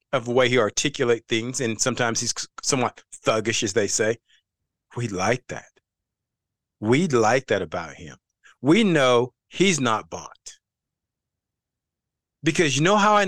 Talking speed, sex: 145 wpm, male